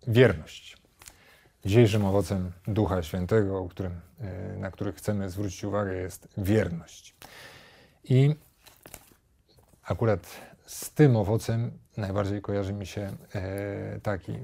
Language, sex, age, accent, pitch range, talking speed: Polish, male, 40-59, native, 100-120 Hz, 100 wpm